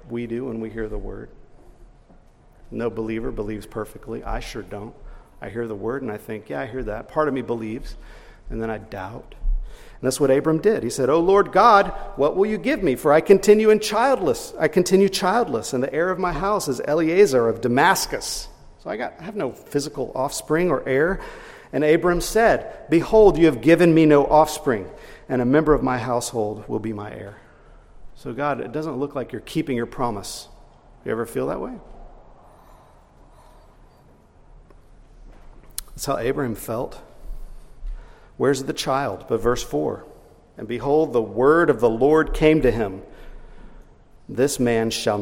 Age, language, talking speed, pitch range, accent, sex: 50-69, English, 175 wpm, 115-165 Hz, American, male